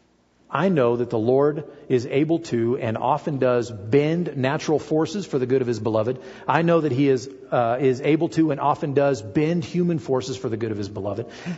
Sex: male